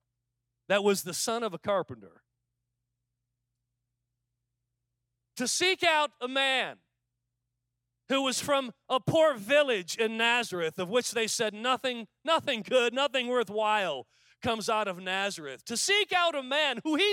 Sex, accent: male, American